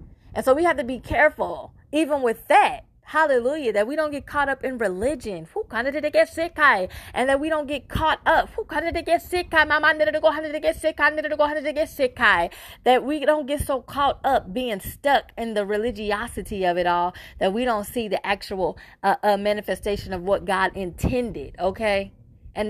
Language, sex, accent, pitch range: English, female, American, 190-275 Hz